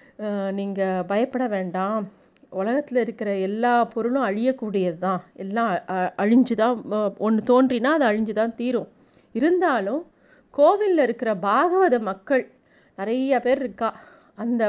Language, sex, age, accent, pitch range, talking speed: Tamil, female, 30-49, native, 210-260 Hz, 110 wpm